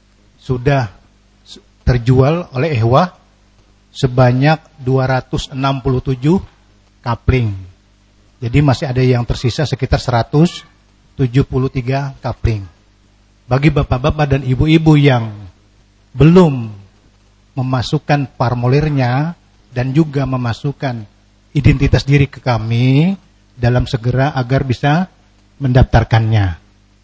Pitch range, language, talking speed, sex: 105-140 Hz, Malay, 80 wpm, male